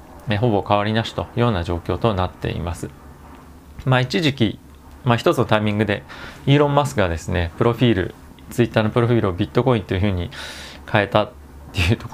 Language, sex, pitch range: Japanese, male, 90-120 Hz